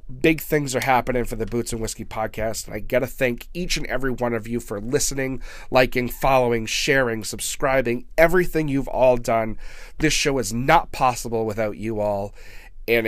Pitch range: 100-125 Hz